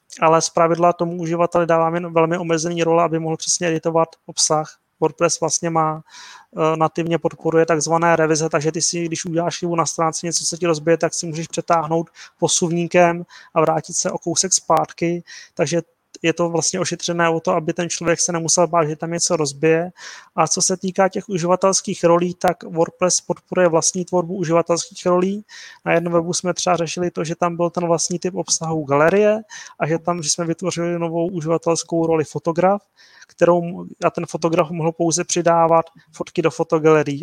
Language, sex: Czech, male